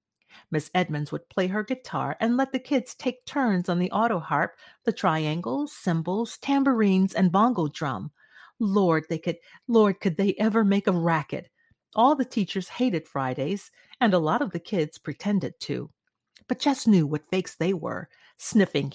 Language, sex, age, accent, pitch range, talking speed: English, female, 40-59, American, 170-250 Hz, 170 wpm